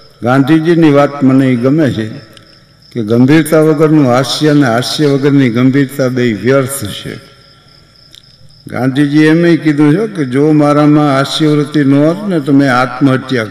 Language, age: Gujarati, 60-79